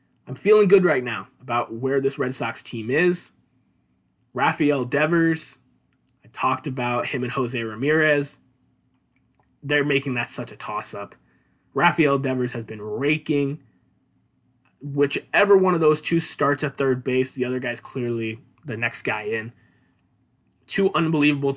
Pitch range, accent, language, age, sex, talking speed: 120-145 Hz, American, English, 20-39, male, 140 wpm